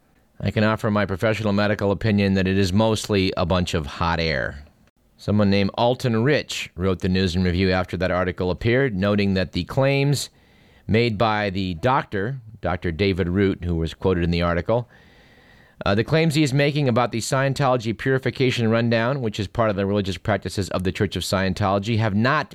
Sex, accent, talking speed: male, American, 190 wpm